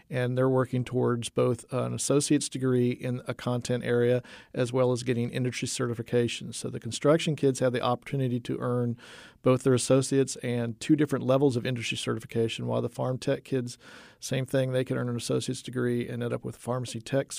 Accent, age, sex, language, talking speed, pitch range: American, 50-69, male, English, 195 wpm, 120-135 Hz